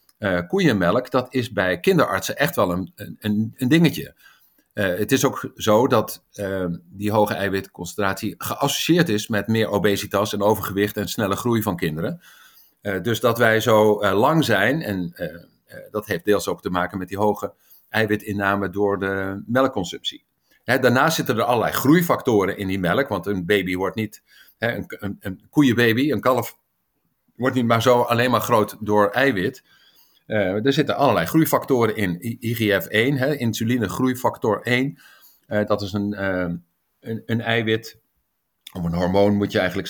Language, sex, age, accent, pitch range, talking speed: Dutch, male, 50-69, Dutch, 100-120 Hz, 160 wpm